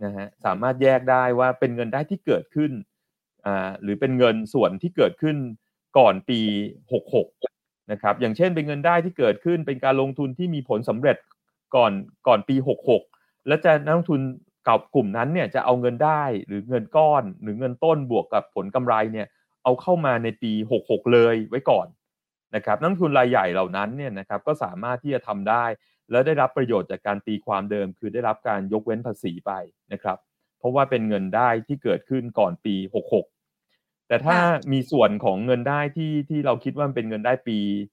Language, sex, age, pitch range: Thai, male, 30-49, 110-145 Hz